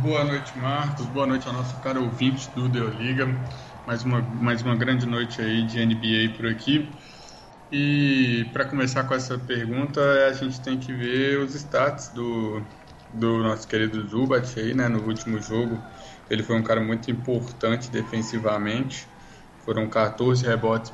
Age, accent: 20-39, Brazilian